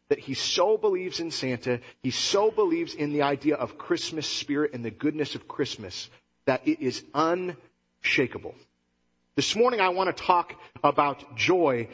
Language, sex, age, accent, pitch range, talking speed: English, male, 40-59, American, 145-210 Hz, 160 wpm